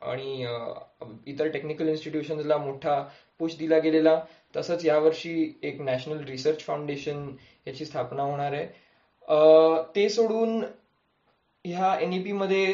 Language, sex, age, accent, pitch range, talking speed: Marathi, male, 20-39, native, 140-180 Hz, 110 wpm